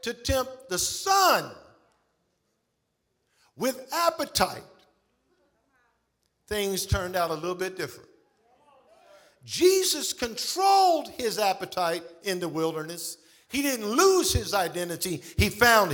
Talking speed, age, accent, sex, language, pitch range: 100 wpm, 50-69, American, male, English, 185-285 Hz